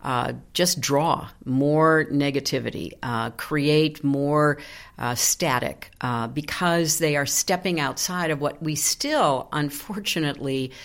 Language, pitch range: English, 140-215 Hz